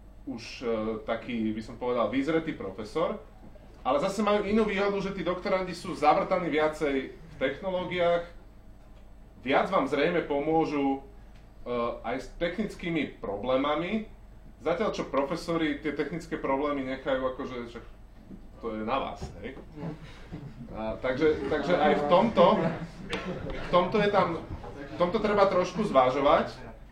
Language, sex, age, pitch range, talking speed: Slovak, male, 30-49, 130-175 Hz, 130 wpm